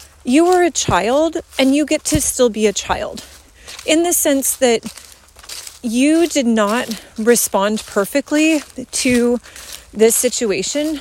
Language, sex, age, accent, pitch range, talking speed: English, female, 30-49, American, 230-300 Hz, 130 wpm